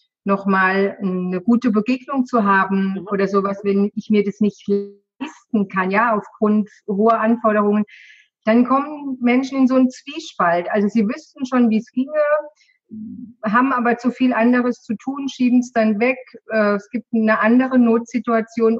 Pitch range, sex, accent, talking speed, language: 210-250 Hz, female, German, 155 wpm, German